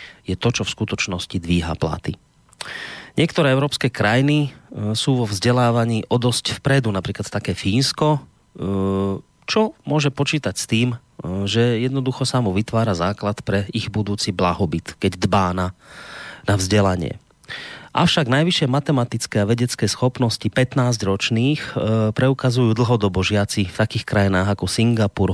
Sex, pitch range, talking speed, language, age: male, 95-125 Hz, 130 wpm, Slovak, 30-49